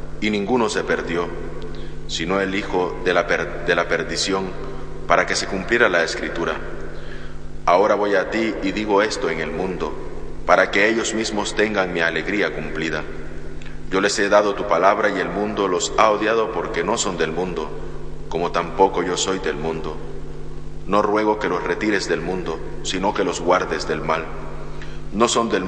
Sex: male